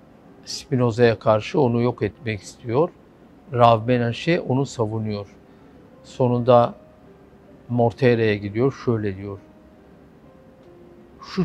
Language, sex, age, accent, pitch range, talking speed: Turkish, male, 60-79, native, 110-140 Hz, 85 wpm